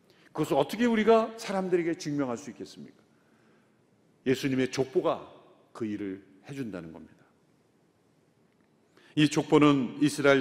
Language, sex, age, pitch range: Korean, male, 40-59, 130-195 Hz